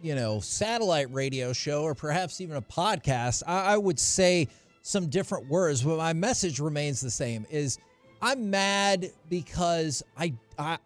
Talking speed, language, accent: 160 wpm, English, American